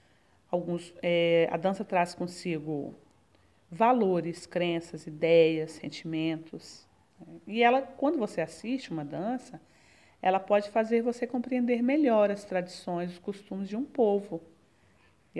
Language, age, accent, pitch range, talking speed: Portuguese, 40-59, Brazilian, 165-220 Hz, 120 wpm